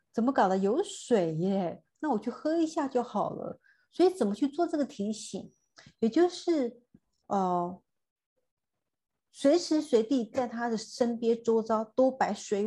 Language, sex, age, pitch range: Chinese, female, 50-69, 195-255 Hz